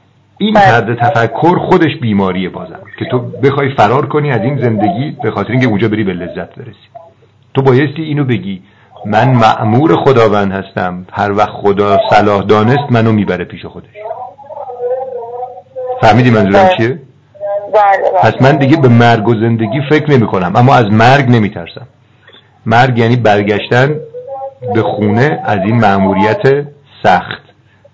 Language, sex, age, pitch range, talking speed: Persian, male, 50-69, 105-145 Hz, 140 wpm